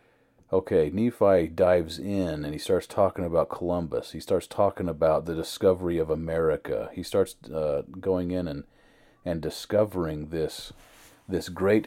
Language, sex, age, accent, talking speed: English, male, 40-59, American, 145 wpm